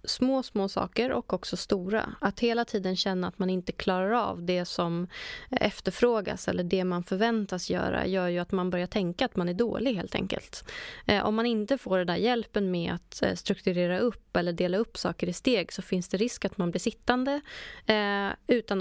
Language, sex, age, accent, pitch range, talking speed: Swedish, female, 20-39, native, 185-230 Hz, 195 wpm